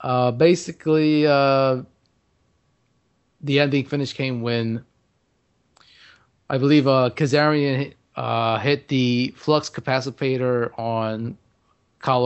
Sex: male